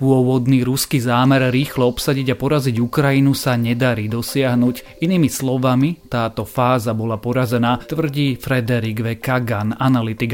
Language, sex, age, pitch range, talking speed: Slovak, male, 30-49, 120-135 Hz, 130 wpm